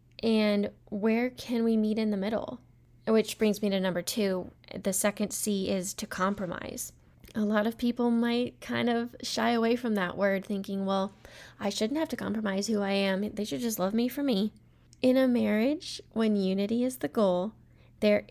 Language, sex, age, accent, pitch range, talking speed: English, female, 10-29, American, 195-230 Hz, 190 wpm